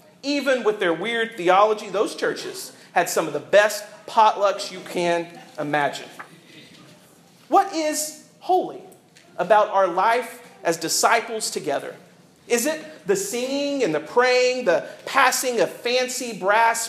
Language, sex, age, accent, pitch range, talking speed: English, male, 40-59, American, 195-265 Hz, 130 wpm